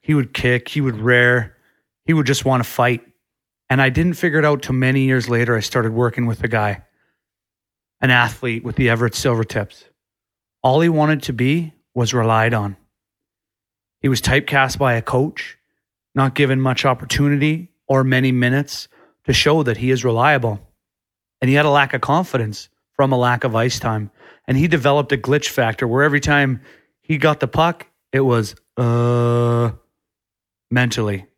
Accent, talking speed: American, 175 wpm